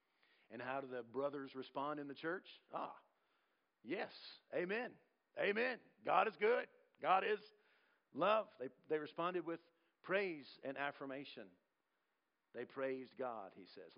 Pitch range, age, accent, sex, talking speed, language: 125-185 Hz, 50-69, American, male, 135 wpm, English